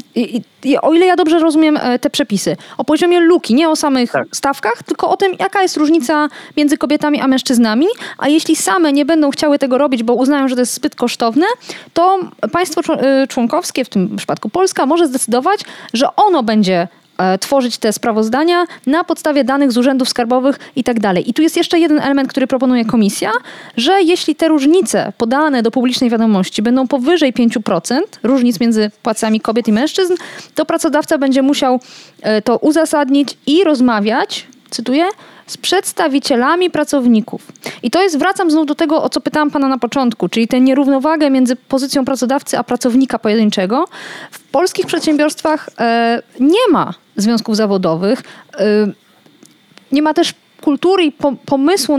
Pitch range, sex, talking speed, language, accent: 235-315 Hz, female, 160 wpm, Polish, native